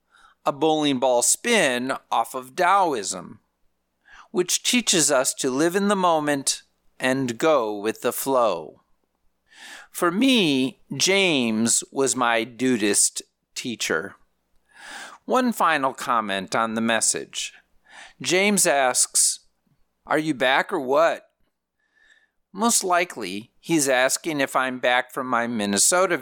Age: 50-69